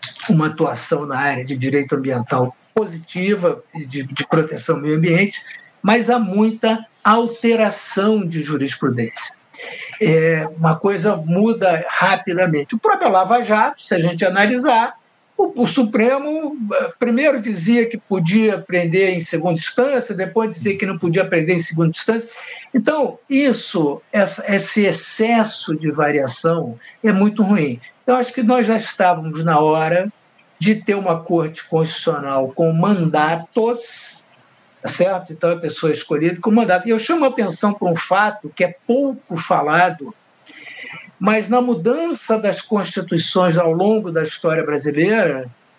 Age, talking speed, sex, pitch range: 60-79, 140 wpm, male, 165-235 Hz